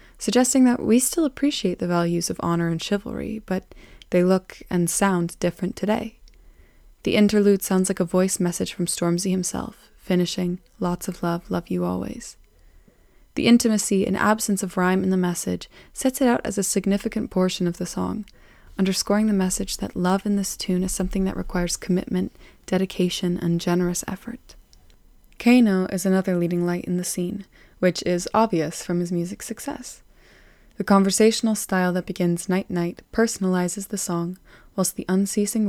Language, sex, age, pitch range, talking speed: English, female, 20-39, 180-205 Hz, 165 wpm